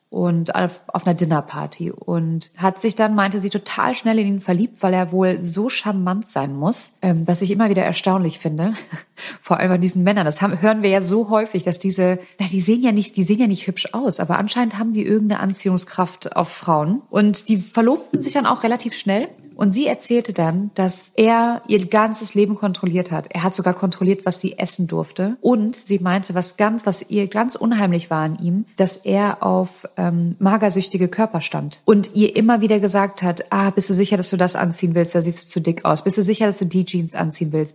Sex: female